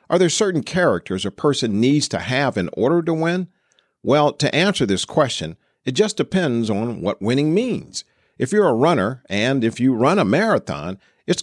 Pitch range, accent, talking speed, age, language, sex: 105-155 Hz, American, 190 wpm, 50-69, English, male